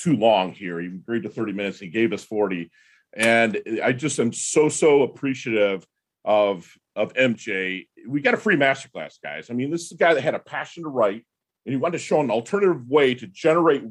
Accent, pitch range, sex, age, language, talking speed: American, 115-165 Hz, male, 50-69, English, 215 wpm